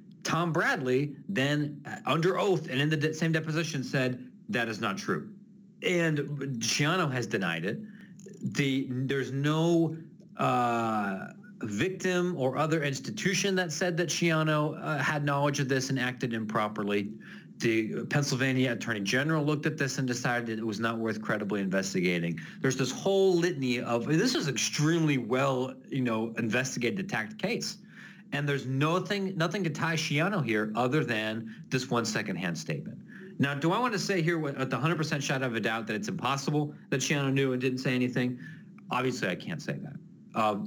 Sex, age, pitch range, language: male, 40-59, 120-170 Hz, English